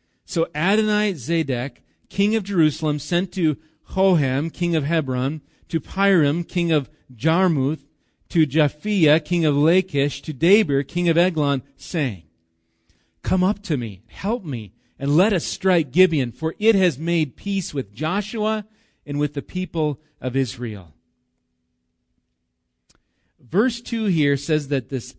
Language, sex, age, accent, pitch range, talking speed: English, male, 40-59, American, 135-175 Hz, 140 wpm